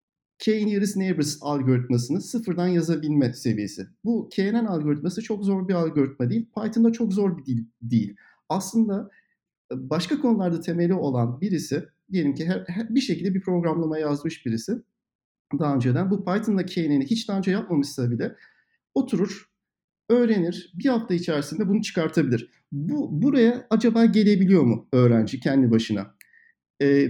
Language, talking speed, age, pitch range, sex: Turkish, 135 wpm, 50-69, 140-215 Hz, male